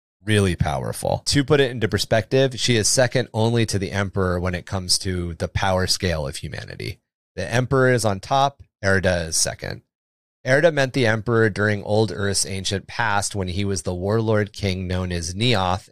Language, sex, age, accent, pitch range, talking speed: English, male, 30-49, American, 95-115 Hz, 185 wpm